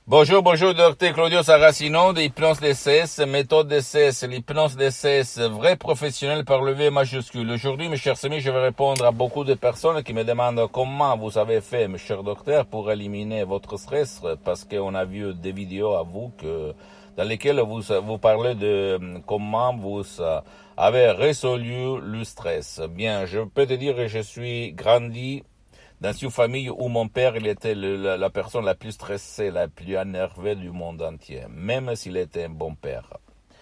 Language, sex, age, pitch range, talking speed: Italian, male, 60-79, 95-135 Hz, 180 wpm